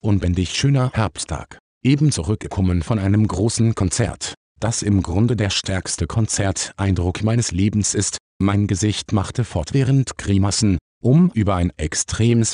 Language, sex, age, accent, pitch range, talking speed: German, male, 50-69, German, 90-115 Hz, 130 wpm